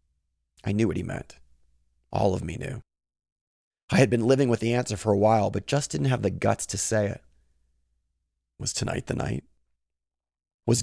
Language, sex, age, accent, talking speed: English, male, 30-49, American, 185 wpm